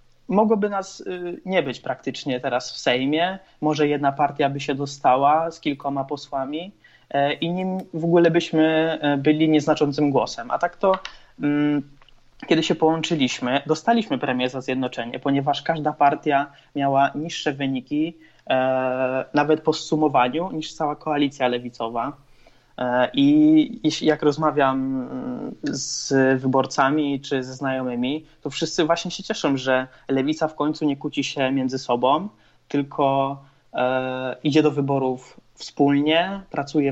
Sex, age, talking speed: male, 20-39, 125 wpm